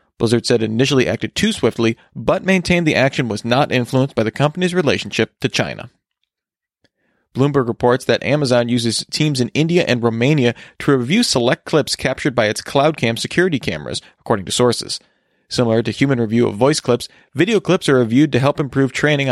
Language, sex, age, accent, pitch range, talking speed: English, male, 30-49, American, 115-150 Hz, 180 wpm